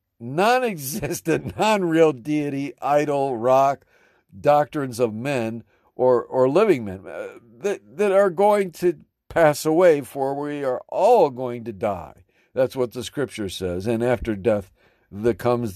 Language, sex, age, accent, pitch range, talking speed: English, male, 50-69, American, 115-155 Hz, 140 wpm